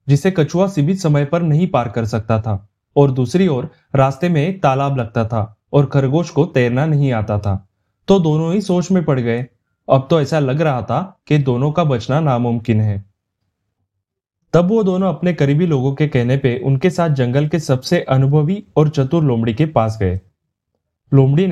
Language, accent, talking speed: Hindi, native, 185 wpm